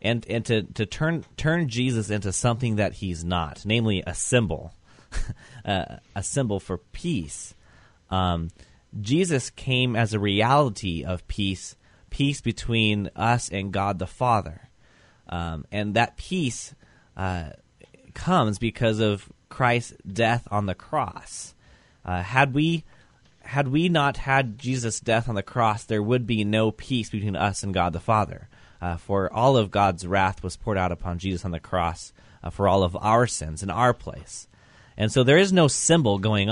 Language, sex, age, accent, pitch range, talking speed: English, male, 20-39, American, 95-120 Hz, 165 wpm